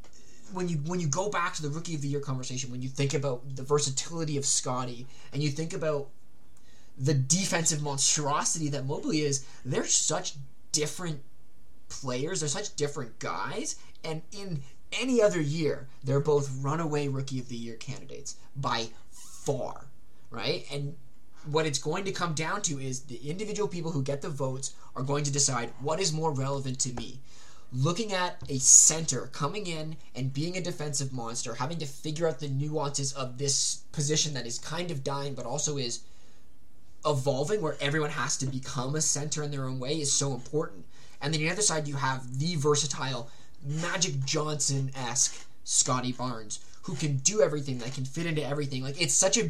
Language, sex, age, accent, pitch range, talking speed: English, male, 20-39, American, 130-155 Hz, 180 wpm